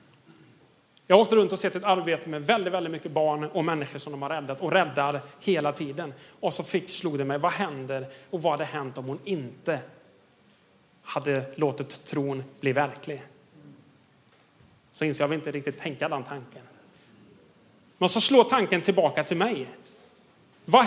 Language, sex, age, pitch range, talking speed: Swedish, male, 30-49, 150-210 Hz, 165 wpm